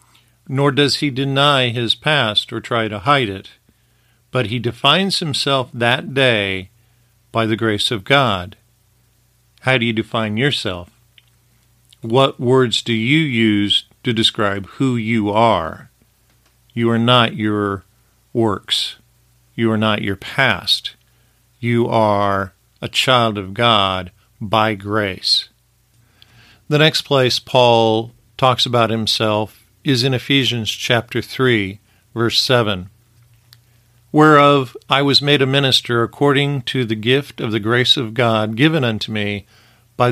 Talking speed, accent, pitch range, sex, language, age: 130 wpm, American, 110-130 Hz, male, English, 50-69